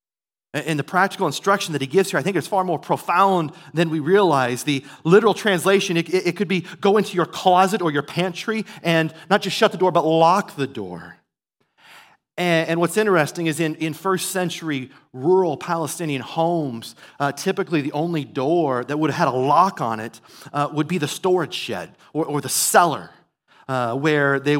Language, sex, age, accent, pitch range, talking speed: English, male, 40-59, American, 145-180 Hz, 195 wpm